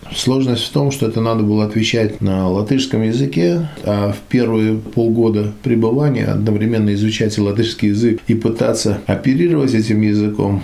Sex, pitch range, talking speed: male, 100-130 Hz, 140 wpm